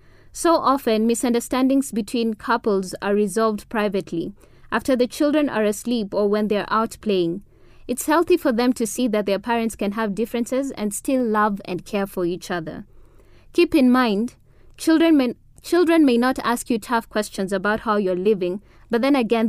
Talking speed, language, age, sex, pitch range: 170 wpm, English, 20-39, female, 195-255 Hz